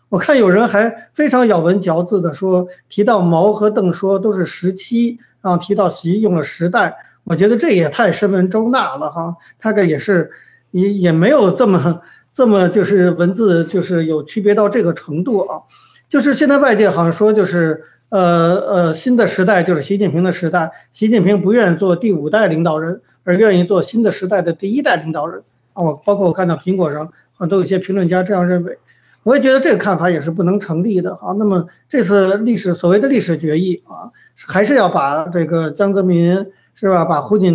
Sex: male